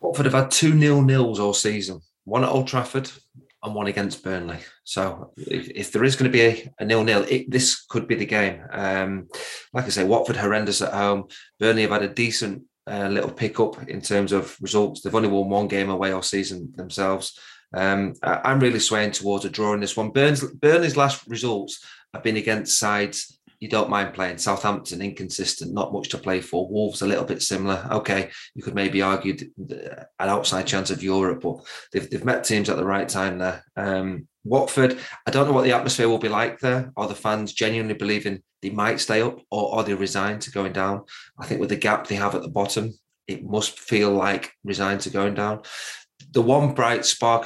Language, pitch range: English, 100-115 Hz